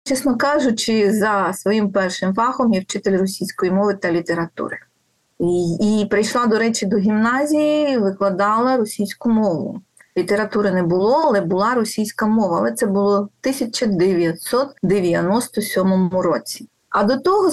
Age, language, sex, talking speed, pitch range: 30-49, Ukrainian, female, 130 wpm, 195-260 Hz